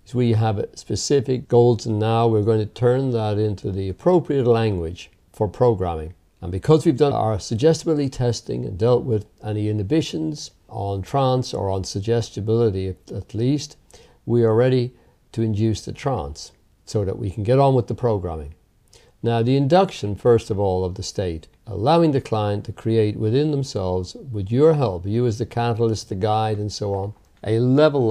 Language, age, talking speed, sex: English, 50-69, 175 wpm, male